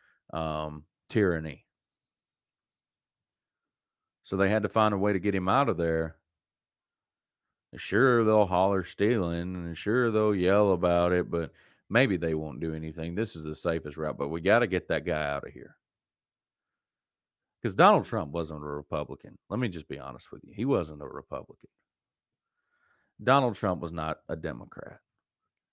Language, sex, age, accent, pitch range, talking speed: English, male, 40-59, American, 80-100 Hz, 160 wpm